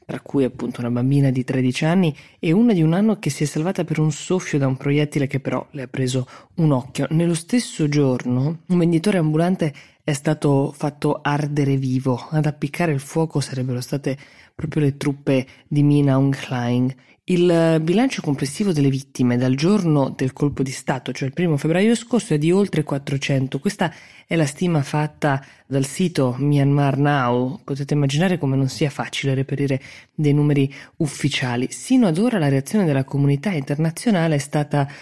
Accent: native